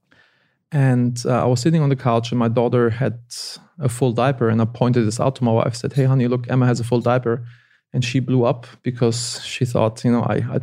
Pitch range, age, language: 120-135 Hz, 20-39, English